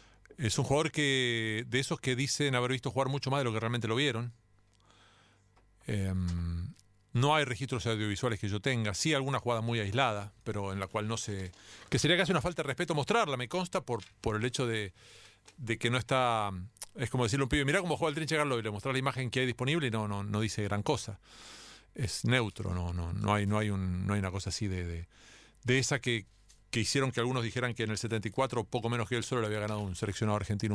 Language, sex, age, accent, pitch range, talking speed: Spanish, male, 40-59, Argentinian, 105-140 Hz, 220 wpm